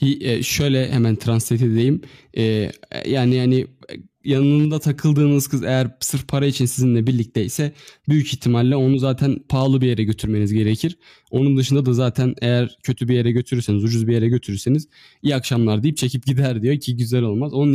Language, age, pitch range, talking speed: Turkish, 20-39, 120-140 Hz, 160 wpm